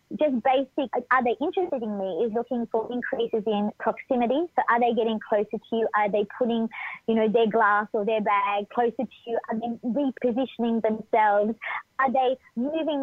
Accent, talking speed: Australian, 195 wpm